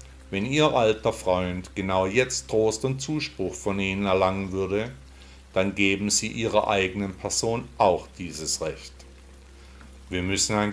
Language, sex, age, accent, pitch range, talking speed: German, male, 50-69, German, 85-110 Hz, 140 wpm